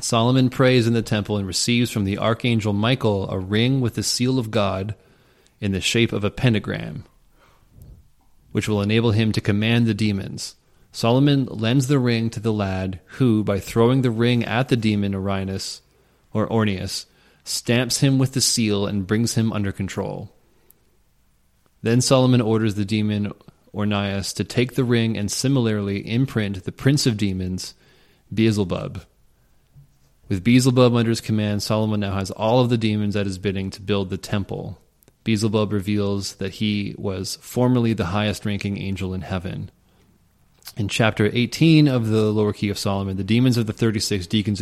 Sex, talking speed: male, 165 wpm